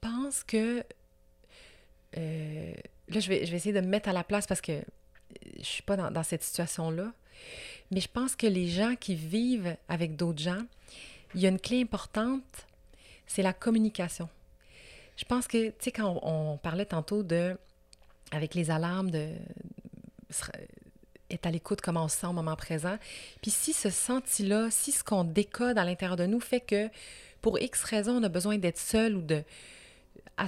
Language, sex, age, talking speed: French, female, 30-49, 190 wpm